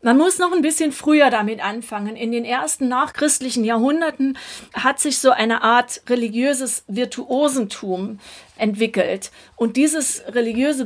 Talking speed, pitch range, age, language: 135 wpm, 215-265 Hz, 40-59, German